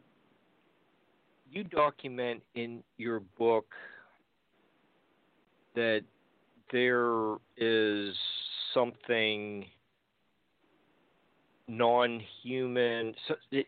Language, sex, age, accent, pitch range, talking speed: English, male, 50-69, American, 105-125 Hz, 45 wpm